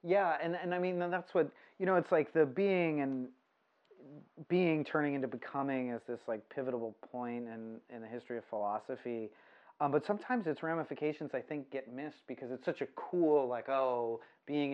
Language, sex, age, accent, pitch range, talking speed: English, male, 30-49, American, 130-165 Hz, 190 wpm